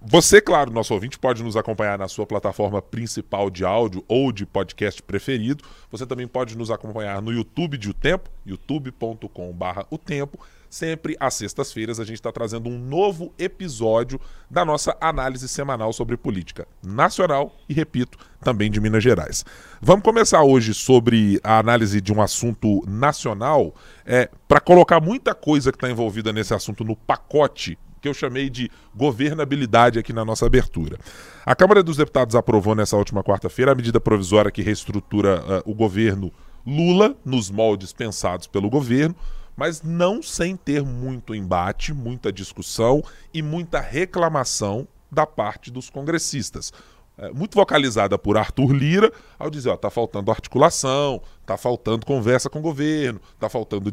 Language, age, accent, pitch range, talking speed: Portuguese, 20-39, Brazilian, 105-145 Hz, 155 wpm